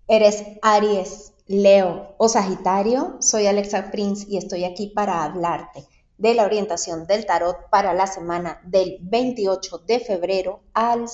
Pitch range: 190-230 Hz